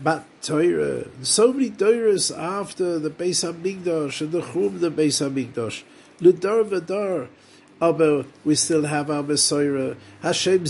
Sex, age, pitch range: male, 50-69, 135-200 Hz